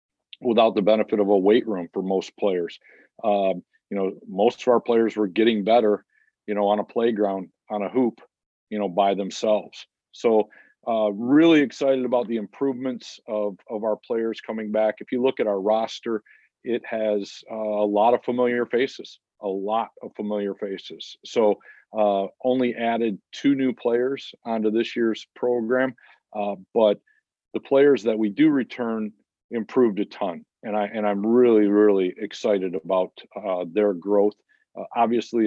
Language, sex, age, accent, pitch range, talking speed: English, male, 40-59, American, 100-115 Hz, 165 wpm